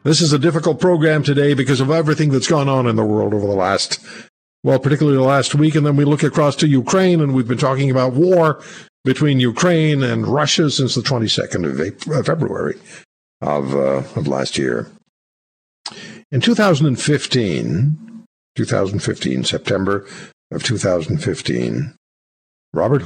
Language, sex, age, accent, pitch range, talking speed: English, male, 60-79, American, 100-150 Hz, 145 wpm